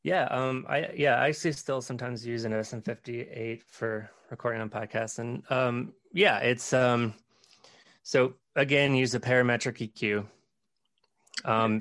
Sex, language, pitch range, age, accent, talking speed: male, English, 110-130 Hz, 30-49, American, 130 wpm